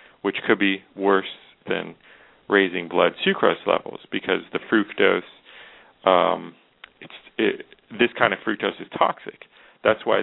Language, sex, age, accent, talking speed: English, male, 40-59, American, 135 wpm